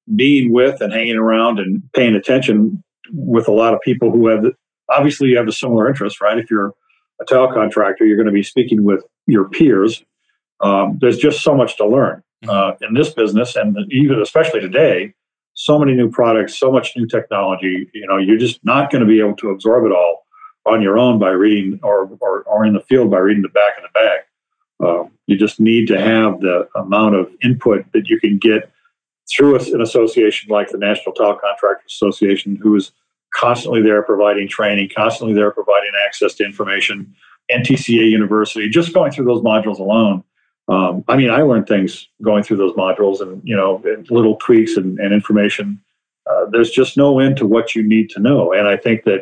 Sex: male